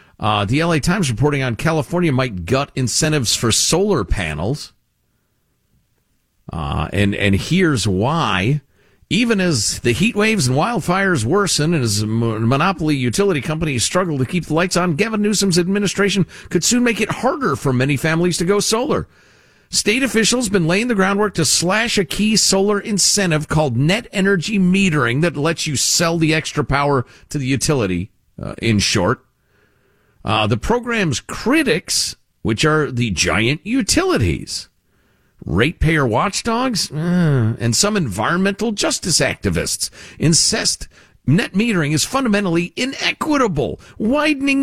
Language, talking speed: English, 140 wpm